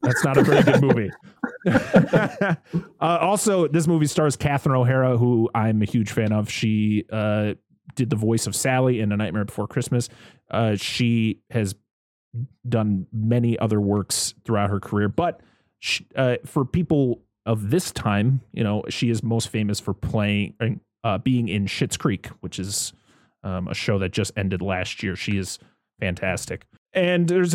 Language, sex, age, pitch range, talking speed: English, male, 30-49, 105-140 Hz, 170 wpm